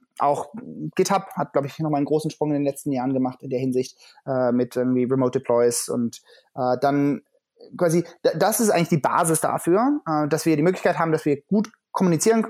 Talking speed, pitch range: 195 wpm, 140-190 Hz